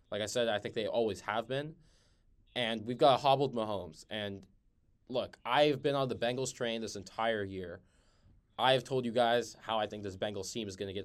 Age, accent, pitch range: 20-39, American, 105-125 Hz